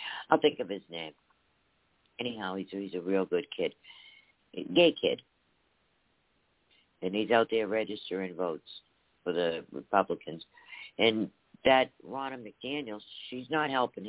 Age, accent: 60-79, American